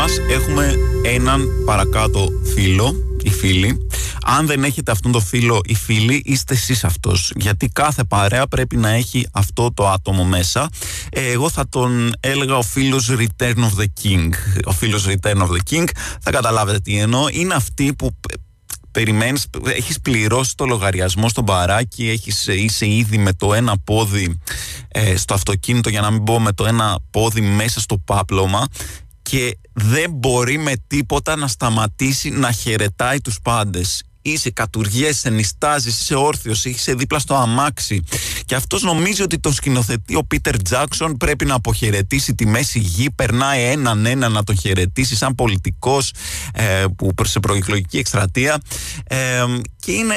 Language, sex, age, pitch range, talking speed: Greek, male, 20-39, 105-140 Hz, 155 wpm